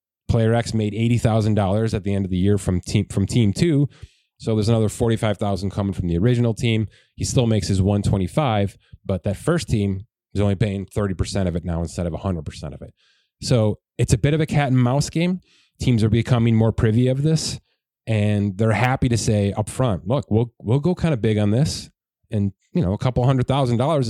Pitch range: 100-125 Hz